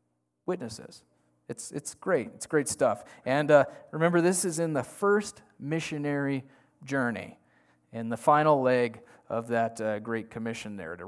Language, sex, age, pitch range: English, male, 30-49, 115-150 Hz